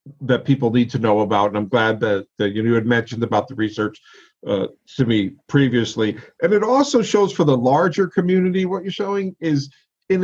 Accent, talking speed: American, 200 wpm